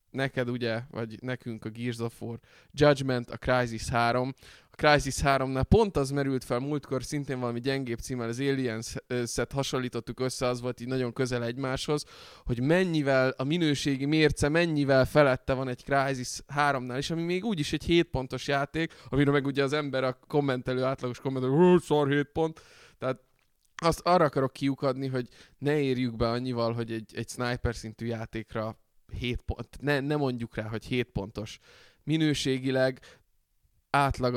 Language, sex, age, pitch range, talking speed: Hungarian, male, 20-39, 120-135 Hz, 160 wpm